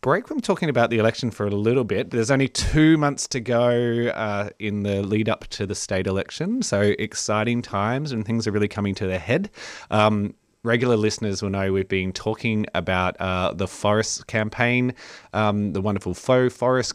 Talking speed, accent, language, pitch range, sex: 190 wpm, Australian, English, 100-120 Hz, male